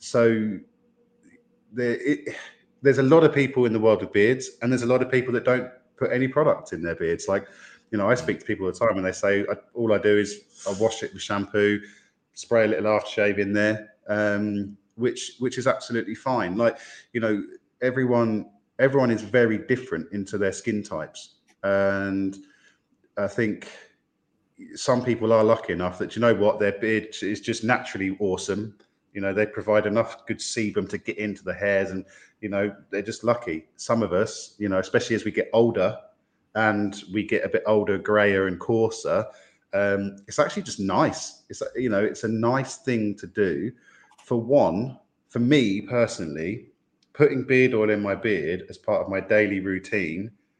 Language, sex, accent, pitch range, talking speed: English, male, British, 100-125 Hz, 190 wpm